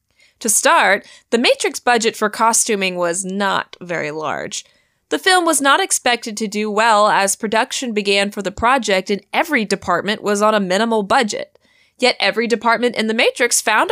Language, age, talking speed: English, 20-39, 170 wpm